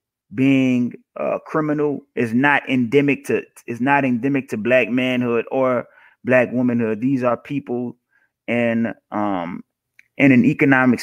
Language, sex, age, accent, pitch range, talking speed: English, male, 30-49, American, 120-145 Hz, 130 wpm